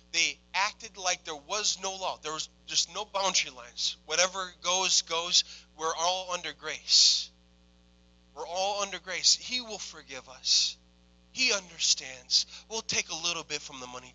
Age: 30-49